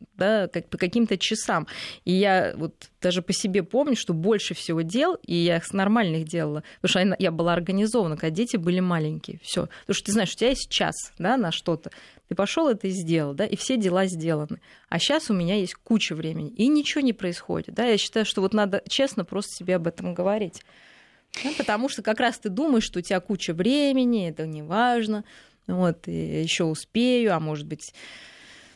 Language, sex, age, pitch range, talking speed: Russian, female, 20-39, 170-210 Hz, 200 wpm